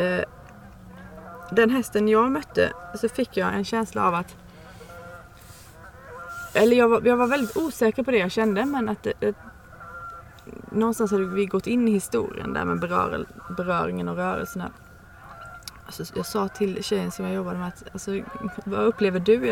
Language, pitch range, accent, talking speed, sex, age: Swedish, 200-240 Hz, native, 165 wpm, female, 30-49